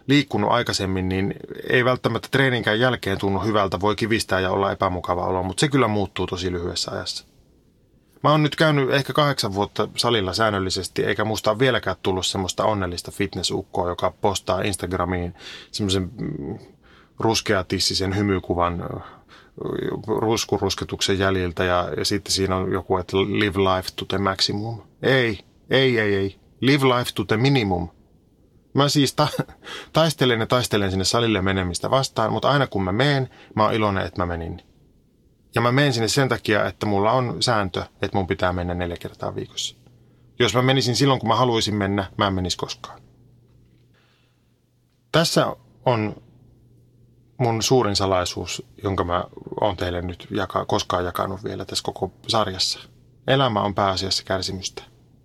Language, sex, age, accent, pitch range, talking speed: Finnish, male, 30-49, native, 95-125 Hz, 150 wpm